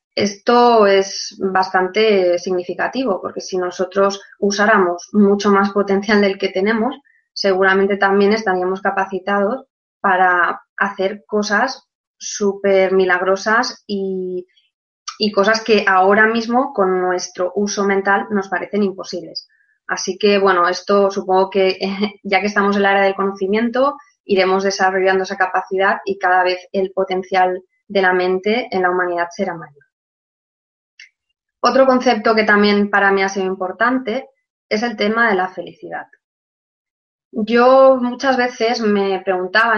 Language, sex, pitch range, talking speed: Spanish, female, 190-230 Hz, 130 wpm